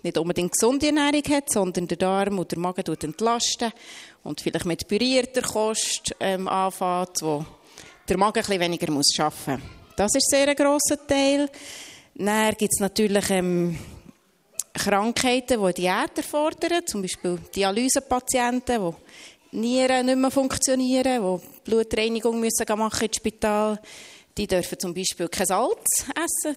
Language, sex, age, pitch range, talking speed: German, female, 30-49, 180-255 Hz, 145 wpm